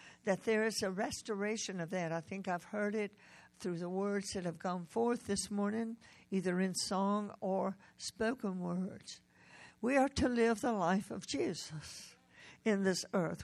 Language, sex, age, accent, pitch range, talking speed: English, female, 60-79, American, 180-225 Hz, 170 wpm